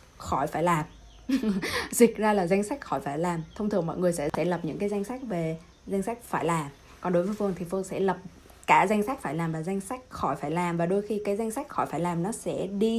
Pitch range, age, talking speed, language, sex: 170-215 Hz, 20-39, 275 wpm, Vietnamese, female